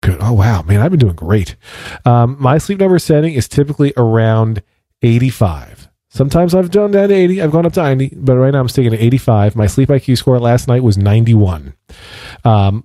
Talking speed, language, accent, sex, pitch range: 200 wpm, English, American, male, 110-145 Hz